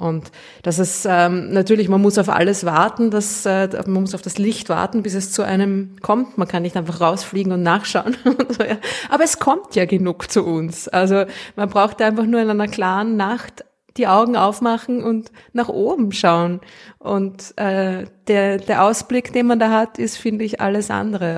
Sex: female